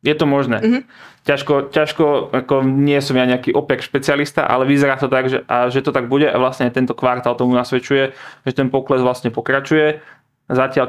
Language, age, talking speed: Slovak, 20-39, 185 wpm